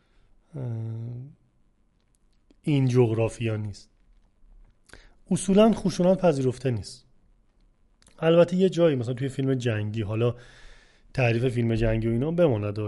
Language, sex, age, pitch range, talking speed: Persian, male, 30-49, 110-140 Hz, 100 wpm